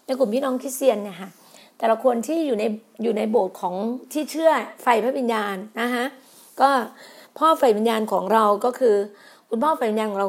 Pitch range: 220-285 Hz